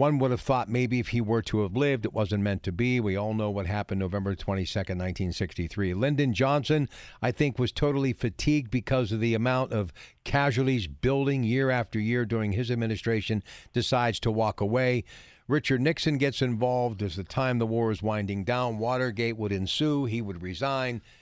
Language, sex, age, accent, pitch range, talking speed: English, male, 50-69, American, 105-135 Hz, 185 wpm